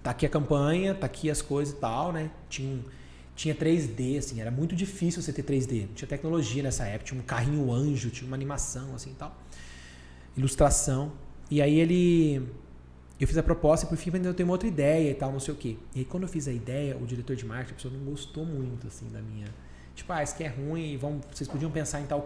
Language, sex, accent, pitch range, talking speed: Portuguese, male, Brazilian, 110-160 Hz, 240 wpm